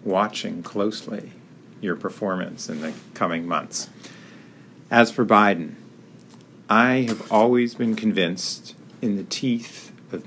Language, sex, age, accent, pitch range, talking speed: English, male, 50-69, American, 90-115 Hz, 115 wpm